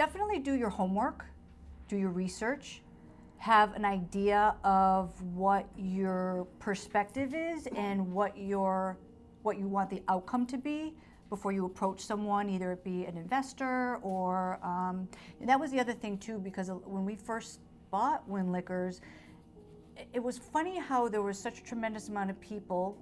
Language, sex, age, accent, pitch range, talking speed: English, female, 50-69, American, 185-220 Hz, 160 wpm